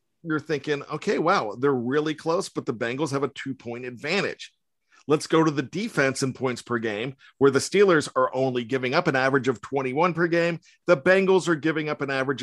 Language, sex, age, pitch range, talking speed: English, male, 50-69, 135-175 Hz, 210 wpm